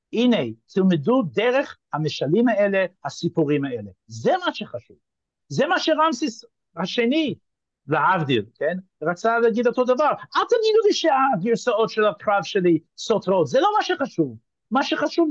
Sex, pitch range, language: male, 180-275 Hz, Hebrew